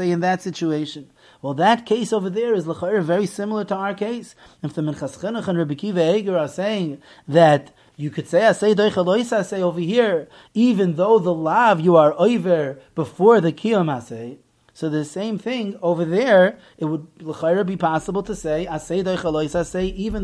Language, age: English, 30-49